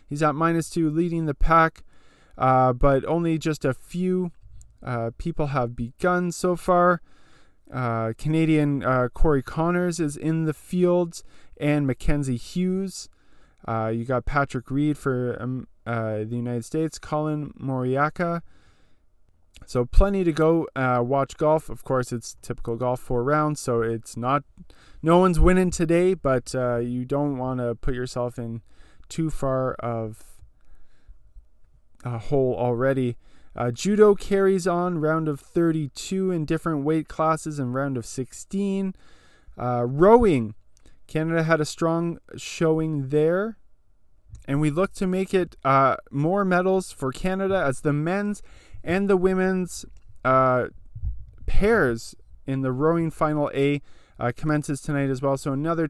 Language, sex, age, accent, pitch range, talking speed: English, male, 20-39, American, 125-165 Hz, 145 wpm